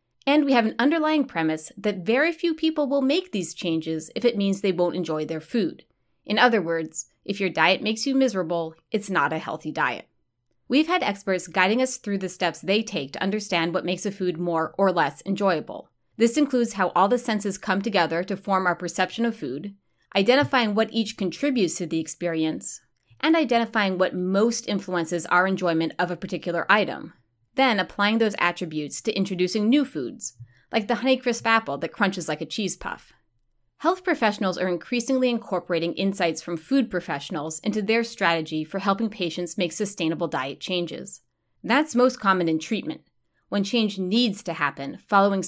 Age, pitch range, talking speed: 30-49, 170-225 Hz, 180 wpm